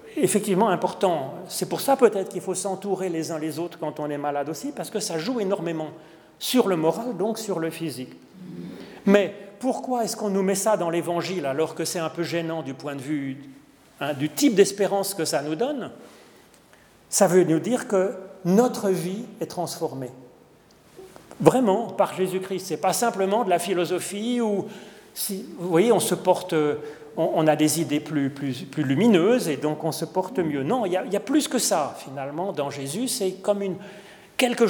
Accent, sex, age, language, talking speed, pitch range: French, male, 40-59, French, 195 wpm, 160-205 Hz